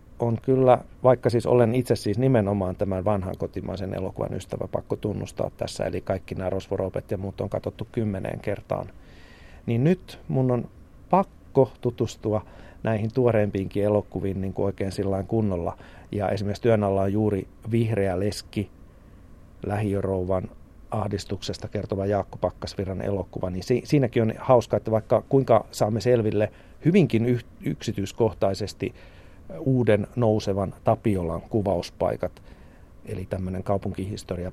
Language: Finnish